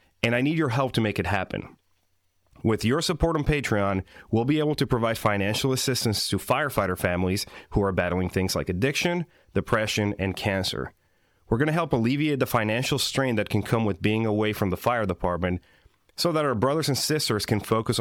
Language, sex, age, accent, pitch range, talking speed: English, male, 30-49, American, 100-130 Hz, 195 wpm